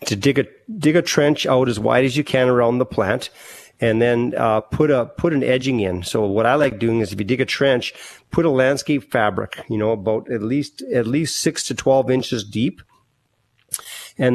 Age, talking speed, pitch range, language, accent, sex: 40-59, 220 wpm, 110-130 Hz, English, American, male